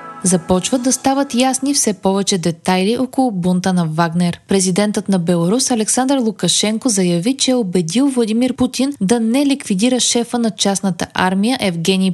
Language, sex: Bulgarian, female